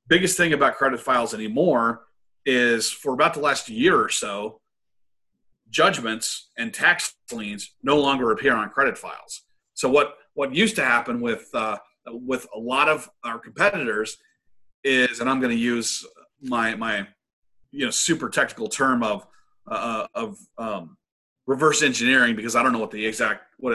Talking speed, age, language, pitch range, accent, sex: 165 wpm, 30-49, English, 115-195 Hz, American, male